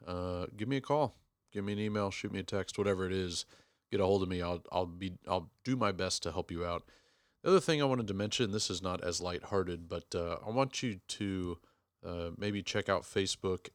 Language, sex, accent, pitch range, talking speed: English, male, American, 90-105 Hz, 240 wpm